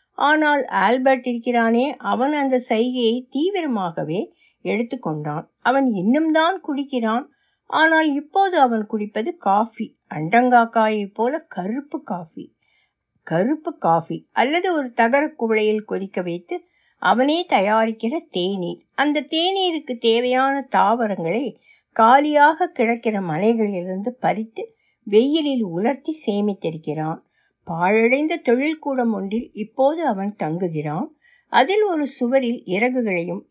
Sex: female